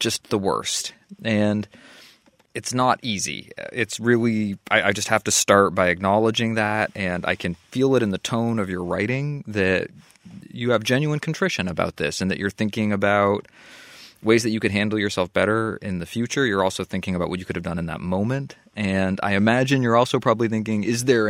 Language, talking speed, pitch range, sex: English, 205 wpm, 95-110 Hz, male